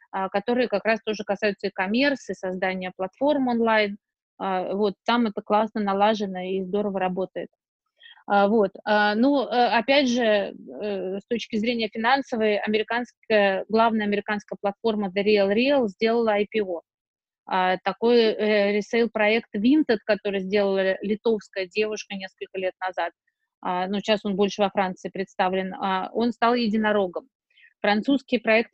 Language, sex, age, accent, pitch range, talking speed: Russian, female, 20-39, native, 200-235 Hz, 120 wpm